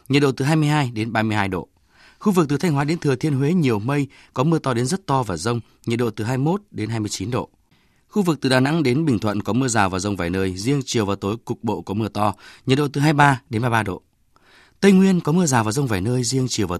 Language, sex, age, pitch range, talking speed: Vietnamese, male, 20-39, 105-140 Hz, 310 wpm